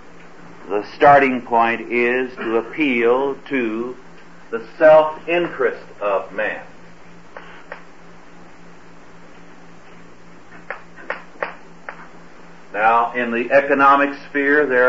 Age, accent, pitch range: 50-69, American, 115-140 Hz